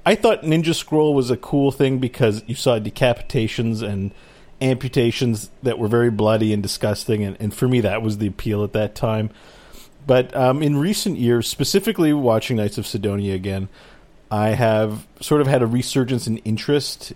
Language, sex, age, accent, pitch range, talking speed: English, male, 40-59, American, 105-140 Hz, 180 wpm